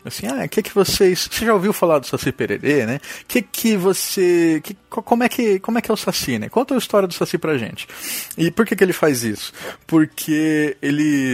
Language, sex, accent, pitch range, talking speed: Portuguese, male, Brazilian, 130-190 Hz, 230 wpm